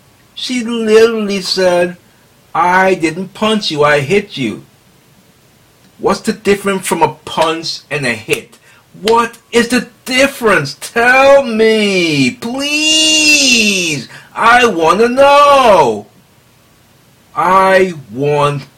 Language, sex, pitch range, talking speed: English, male, 115-185 Hz, 100 wpm